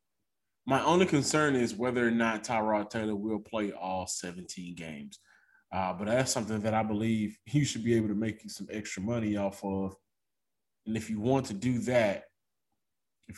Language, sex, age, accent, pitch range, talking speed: English, male, 20-39, American, 110-140 Hz, 180 wpm